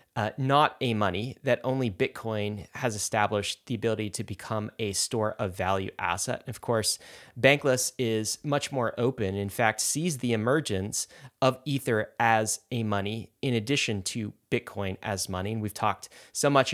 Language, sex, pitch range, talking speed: English, male, 105-130 Hz, 165 wpm